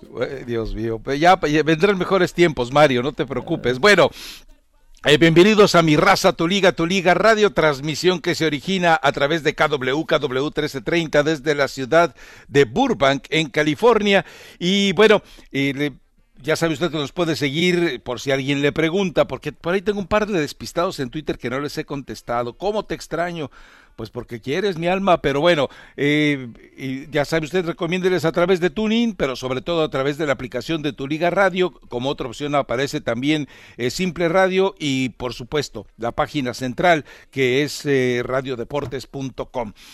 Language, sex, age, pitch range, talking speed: English, male, 60-79, 140-190 Hz, 175 wpm